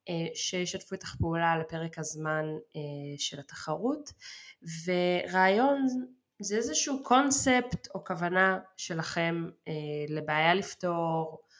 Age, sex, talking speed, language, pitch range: 20-39, female, 85 wpm, Hebrew, 155-195 Hz